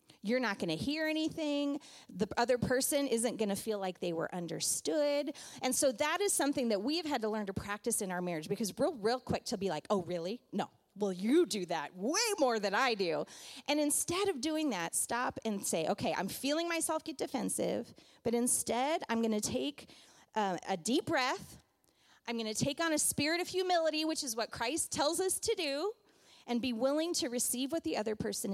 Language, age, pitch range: English, 30-49, 195-285 Hz